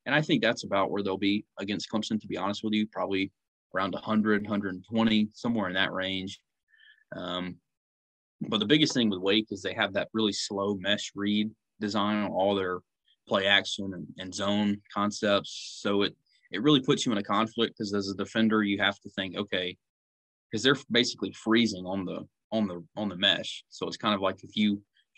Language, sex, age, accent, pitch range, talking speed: English, male, 20-39, American, 95-110 Hz, 205 wpm